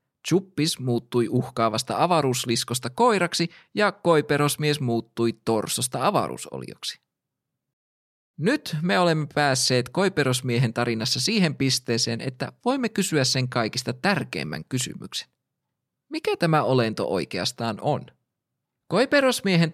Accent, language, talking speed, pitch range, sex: native, Finnish, 95 wpm, 115-160 Hz, male